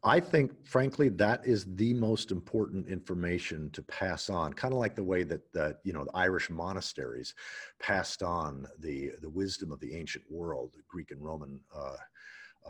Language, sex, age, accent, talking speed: English, male, 50-69, American, 180 wpm